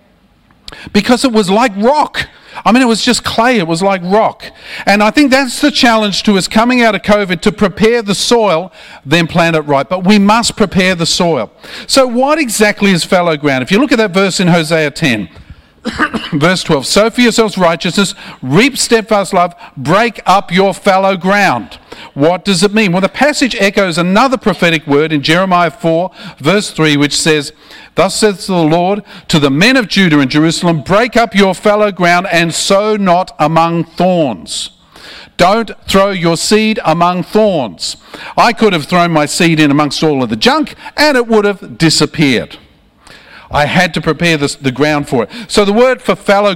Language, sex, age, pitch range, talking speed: English, male, 50-69, 160-210 Hz, 190 wpm